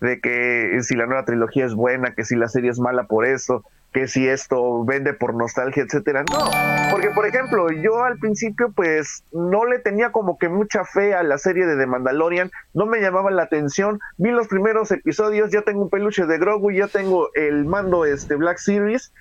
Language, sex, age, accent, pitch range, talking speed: Spanish, male, 30-49, Mexican, 135-200 Hz, 205 wpm